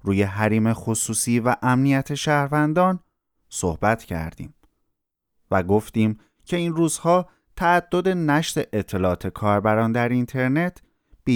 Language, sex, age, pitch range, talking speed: Persian, male, 30-49, 95-150 Hz, 105 wpm